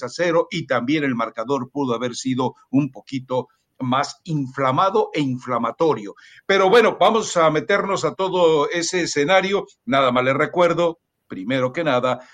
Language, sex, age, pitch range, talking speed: Spanish, male, 60-79, 140-190 Hz, 150 wpm